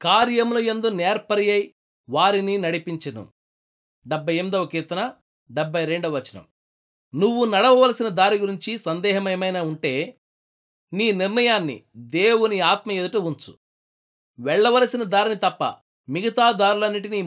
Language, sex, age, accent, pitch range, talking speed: Telugu, male, 30-49, native, 160-215 Hz, 105 wpm